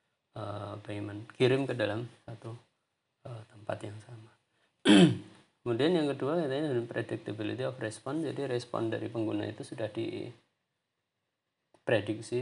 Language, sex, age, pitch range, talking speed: Indonesian, male, 30-49, 110-130 Hz, 110 wpm